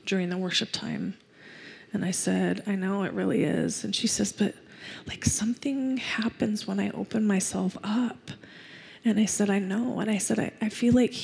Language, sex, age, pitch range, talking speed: English, female, 20-39, 185-225 Hz, 190 wpm